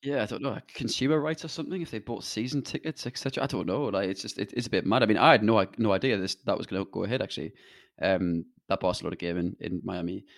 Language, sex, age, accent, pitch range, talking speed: English, male, 20-39, British, 95-120 Hz, 270 wpm